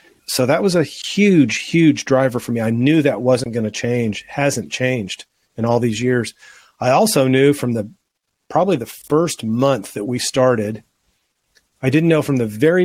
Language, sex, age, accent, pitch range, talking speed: English, male, 40-59, American, 115-140 Hz, 185 wpm